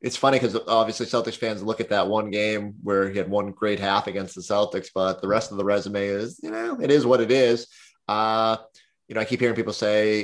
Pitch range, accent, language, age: 105-130 Hz, American, English, 20-39